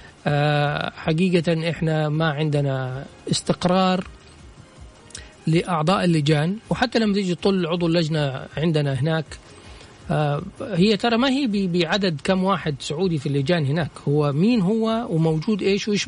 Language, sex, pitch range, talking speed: Arabic, male, 165-205 Hz, 125 wpm